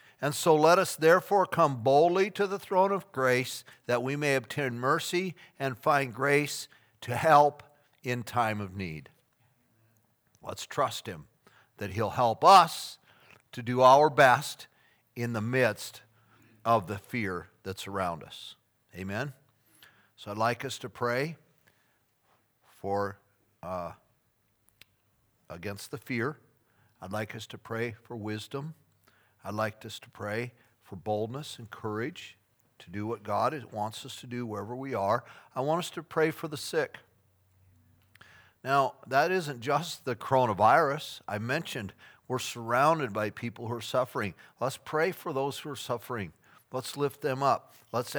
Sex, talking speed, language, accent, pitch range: male, 150 wpm, English, American, 105-135 Hz